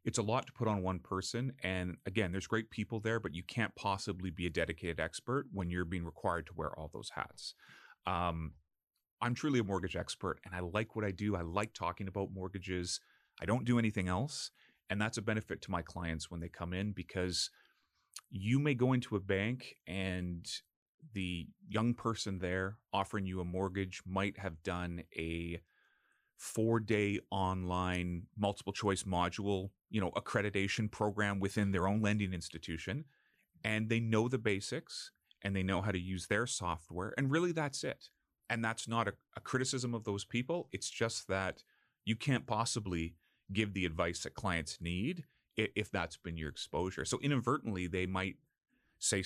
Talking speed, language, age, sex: 180 wpm, English, 30-49, male